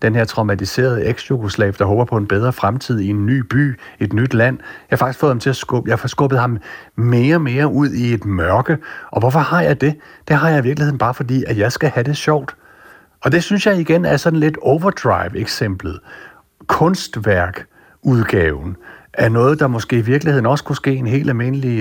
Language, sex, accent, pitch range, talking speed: Danish, male, native, 110-140 Hz, 210 wpm